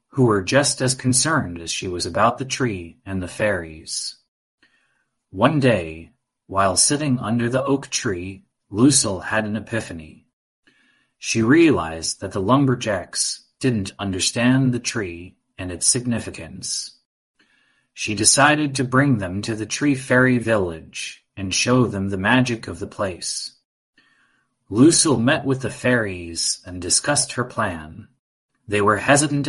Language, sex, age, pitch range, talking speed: English, male, 30-49, 95-130 Hz, 140 wpm